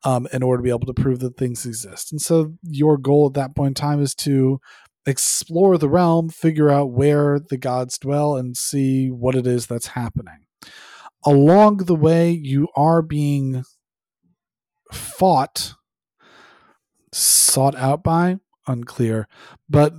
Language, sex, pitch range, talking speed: English, male, 120-160 Hz, 150 wpm